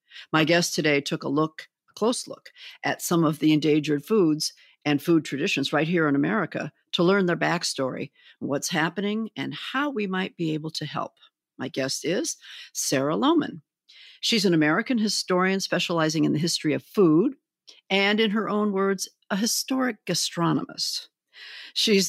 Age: 50-69